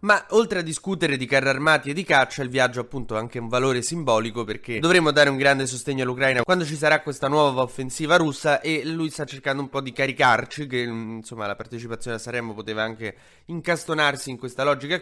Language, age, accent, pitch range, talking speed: Italian, 20-39, native, 115-145 Hz, 210 wpm